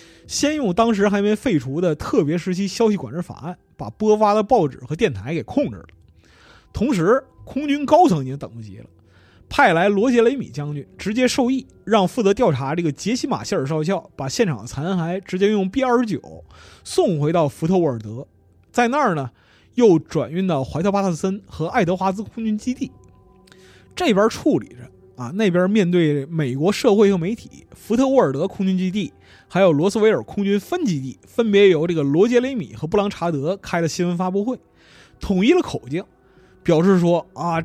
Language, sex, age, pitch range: Chinese, male, 20-39, 150-220 Hz